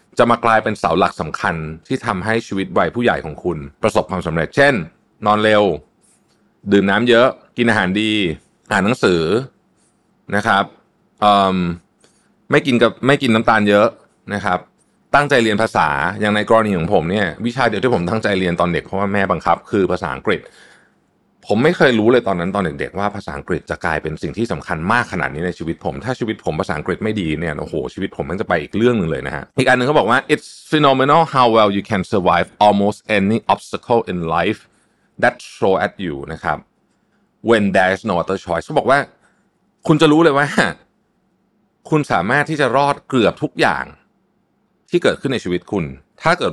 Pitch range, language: 90-140 Hz, Thai